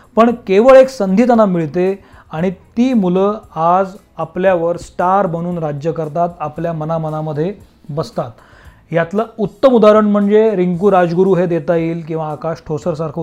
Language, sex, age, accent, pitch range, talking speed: Marathi, male, 30-49, native, 160-210 Hz, 140 wpm